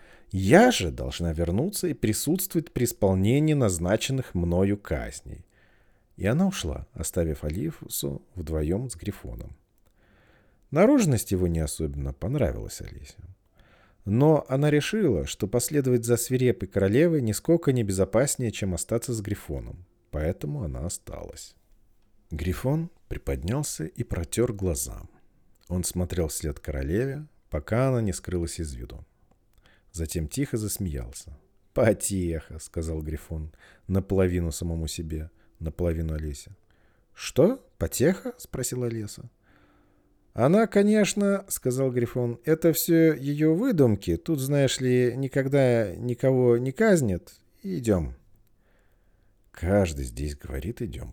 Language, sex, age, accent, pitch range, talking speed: Russian, male, 40-59, native, 85-125 Hz, 110 wpm